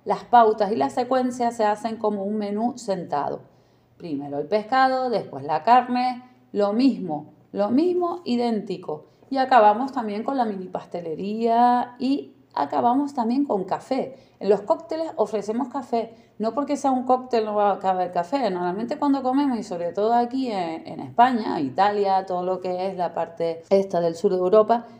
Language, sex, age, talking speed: Spanish, female, 30-49, 170 wpm